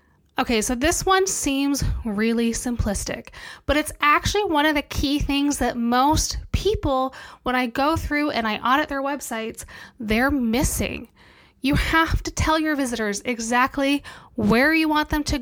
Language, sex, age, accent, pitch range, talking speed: English, female, 10-29, American, 235-290 Hz, 160 wpm